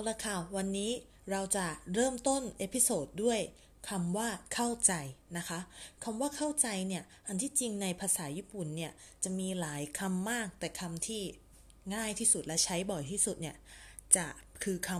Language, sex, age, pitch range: Thai, female, 20-39, 160-205 Hz